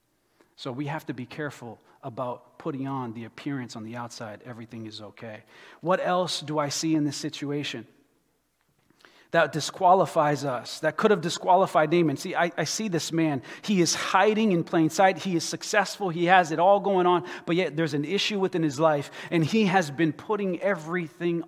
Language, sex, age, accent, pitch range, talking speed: English, male, 30-49, American, 150-185 Hz, 190 wpm